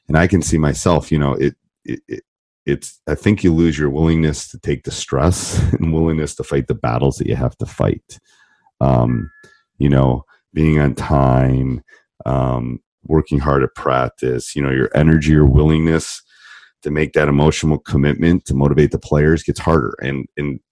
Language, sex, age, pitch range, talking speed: English, male, 30-49, 65-80 Hz, 180 wpm